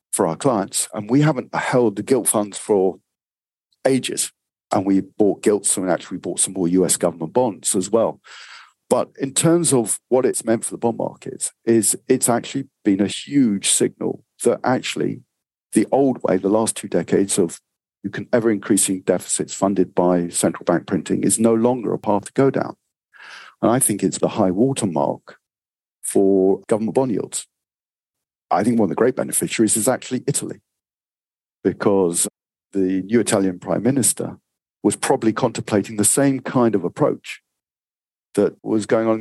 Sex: male